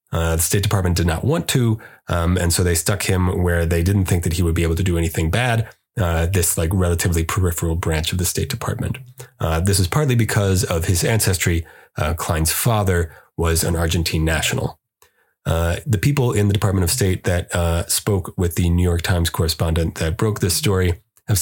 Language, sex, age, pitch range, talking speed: English, male, 30-49, 85-105 Hz, 205 wpm